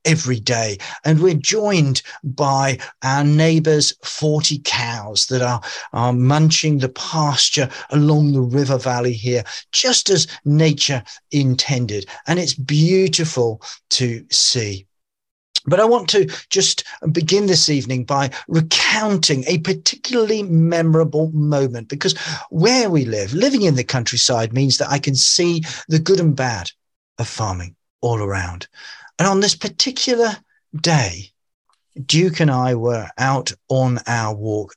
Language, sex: English, male